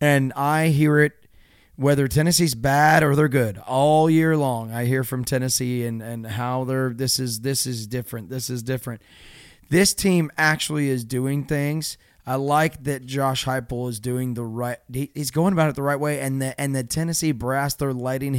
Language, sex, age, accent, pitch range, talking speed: English, male, 30-49, American, 125-145 Hz, 195 wpm